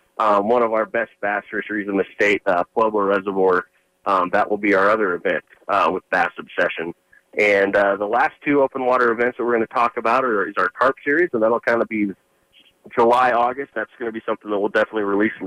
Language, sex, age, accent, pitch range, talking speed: English, male, 30-49, American, 100-125 Hz, 235 wpm